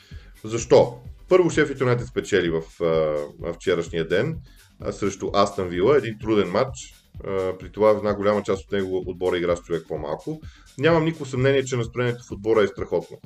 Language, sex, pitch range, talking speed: Bulgarian, male, 105-135 Hz, 175 wpm